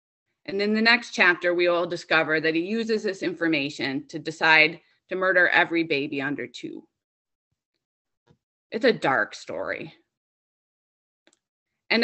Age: 20-39